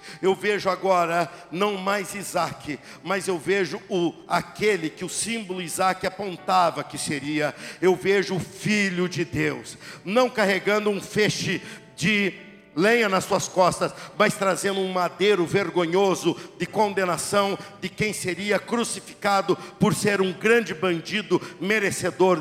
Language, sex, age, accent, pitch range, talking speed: Portuguese, male, 60-79, Brazilian, 185-235 Hz, 130 wpm